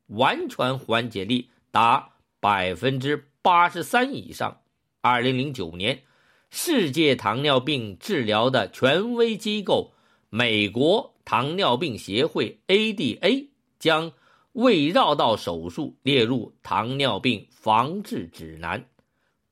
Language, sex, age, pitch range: Chinese, male, 50-69, 105-165 Hz